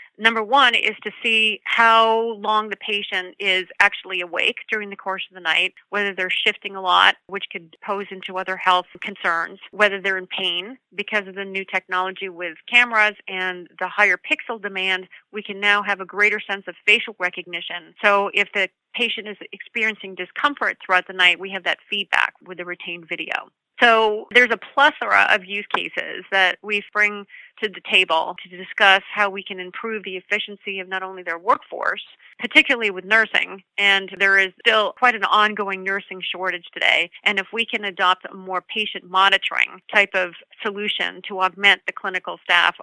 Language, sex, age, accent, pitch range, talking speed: English, female, 30-49, American, 185-210 Hz, 180 wpm